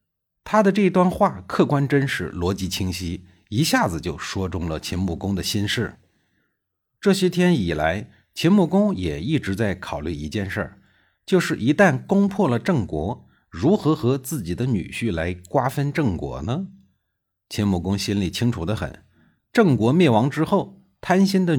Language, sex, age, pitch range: Chinese, male, 50-69, 90-150 Hz